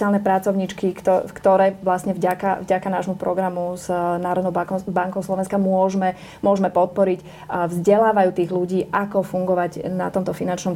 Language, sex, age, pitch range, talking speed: Slovak, female, 30-49, 175-195 Hz, 125 wpm